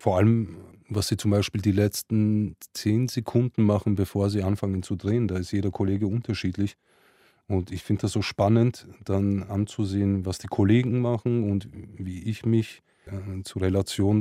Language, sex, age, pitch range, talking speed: German, male, 30-49, 100-115 Hz, 170 wpm